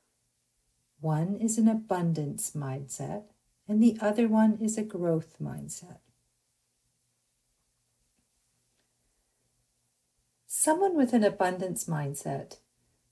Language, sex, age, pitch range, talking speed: English, female, 50-69, 155-215 Hz, 80 wpm